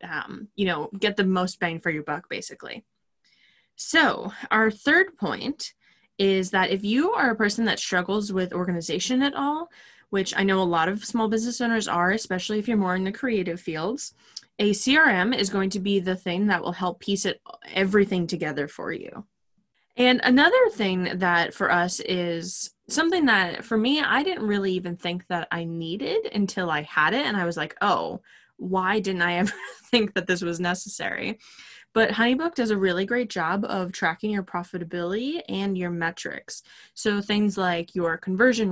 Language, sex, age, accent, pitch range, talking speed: English, female, 20-39, American, 175-225 Hz, 185 wpm